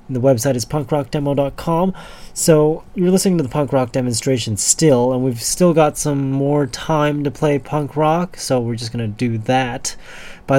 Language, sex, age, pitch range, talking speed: English, male, 30-49, 120-140 Hz, 180 wpm